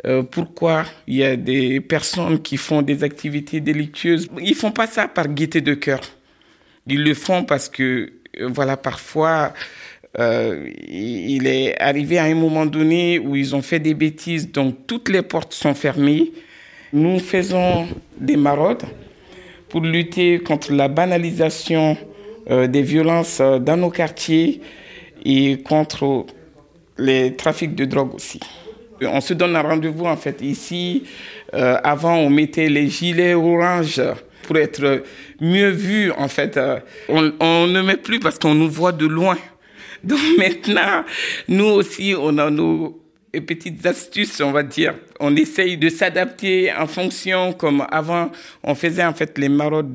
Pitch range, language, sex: 145-175 Hz, French, male